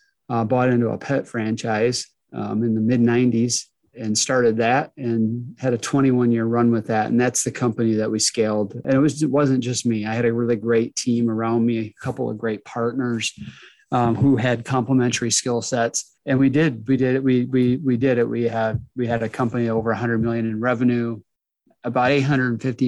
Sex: male